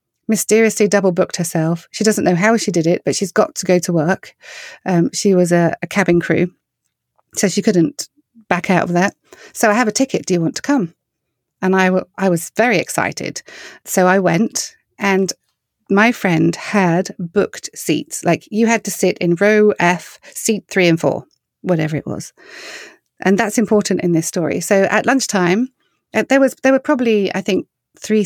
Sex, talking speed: female, 190 wpm